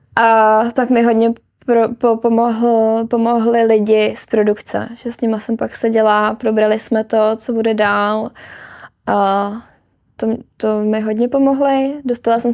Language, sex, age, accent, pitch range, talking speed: Czech, female, 20-39, native, 205-235 Hz, 135 wpm